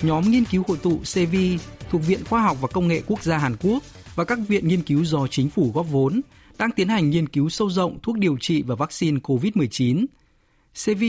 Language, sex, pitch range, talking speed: Vietnamese, male, 140-190 Hz, 220 wpm